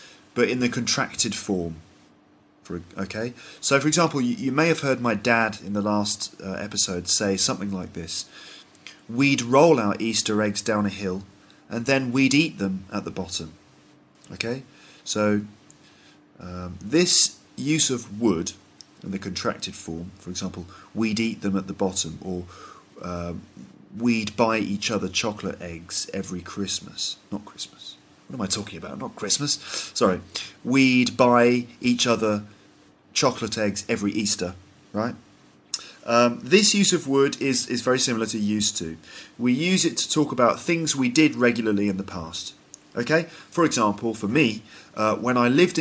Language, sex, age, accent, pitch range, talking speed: English, male, 30-49, British, 95-120 Hz, 160 wpm